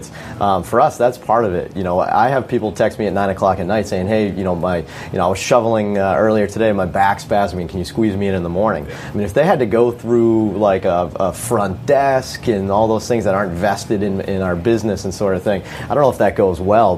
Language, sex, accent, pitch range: English, male, American, 95-115 Hz